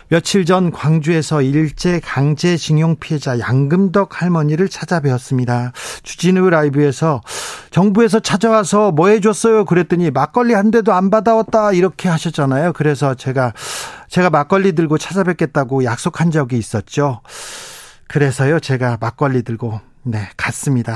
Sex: male